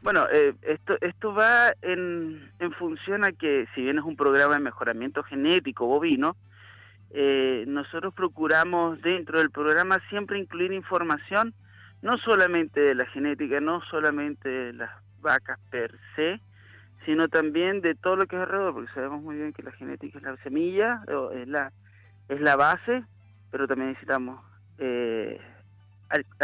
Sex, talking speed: male, 150 wpm